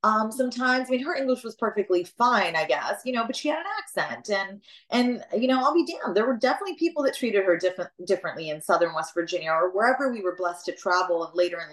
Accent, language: American, English